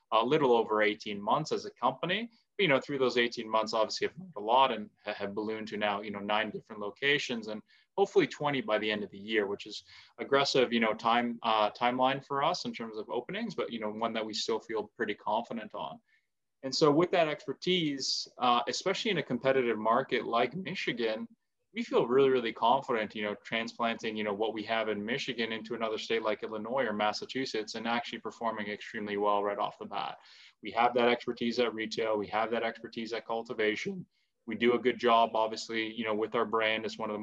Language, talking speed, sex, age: English, 215 wpm, male, 20-39